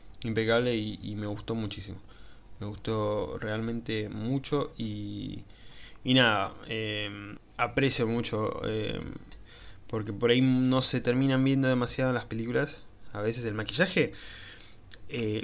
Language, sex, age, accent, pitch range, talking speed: Spanish, male, 20-39, Argentinian, 105-130 Hz, 130 wpm